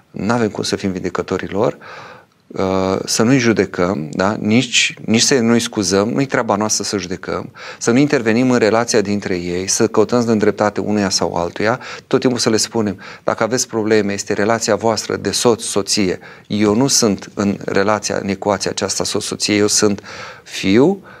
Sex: male